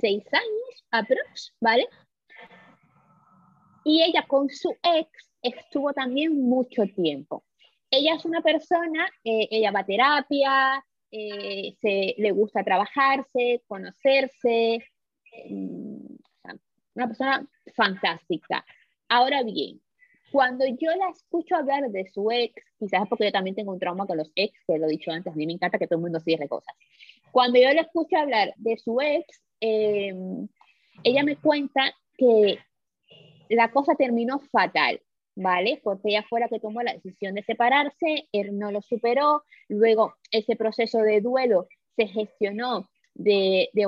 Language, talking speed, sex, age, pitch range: Spanish, 145 wpm, female, 20-39, 200-275 Hz